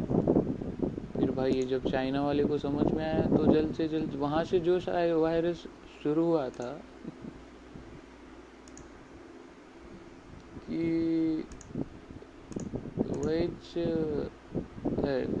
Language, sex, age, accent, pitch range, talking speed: Marathi, male, 30-49, native, 130-170 Hz, 90 wpm